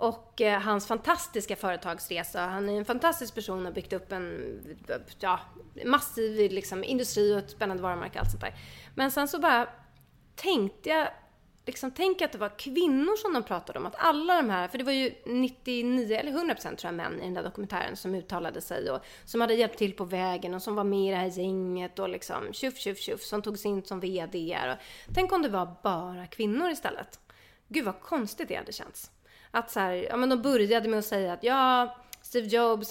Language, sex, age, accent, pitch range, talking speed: English, female, 30-49, Swedish, 195-250 Hz, 210 wpm